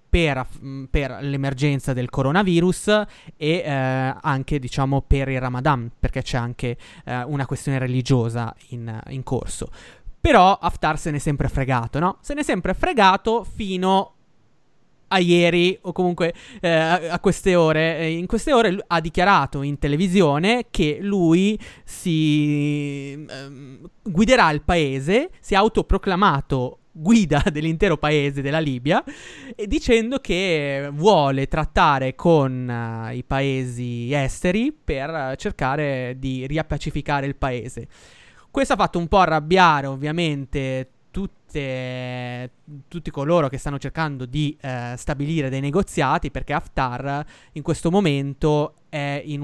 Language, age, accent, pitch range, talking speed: Italian, 20-39, native, 135-175 Hz, 125 wpm